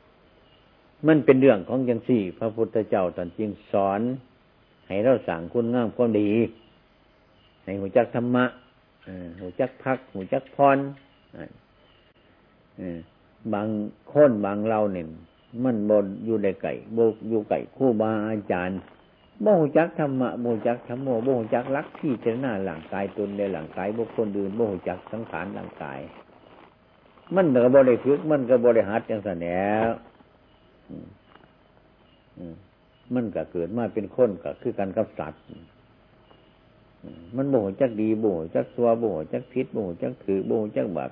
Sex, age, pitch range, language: male, 60-79, 95-125 Hz, Thai